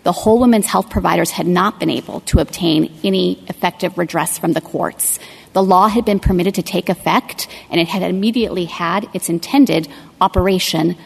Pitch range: 180-215 Hz